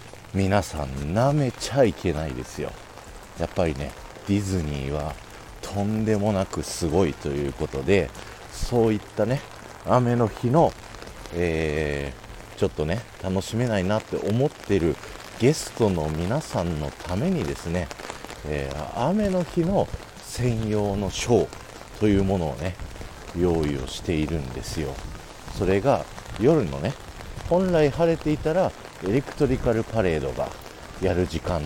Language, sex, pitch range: Japanese, male, 85-130 Hz